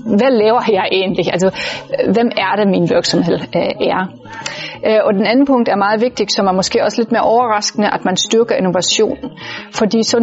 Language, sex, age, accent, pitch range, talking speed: Danish, female, 30-49, native, 190-230 Hz, 180 wpm